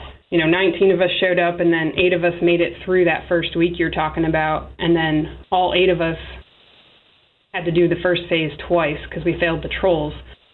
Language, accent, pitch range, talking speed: English, American, 160-180 Hz, 220 wpm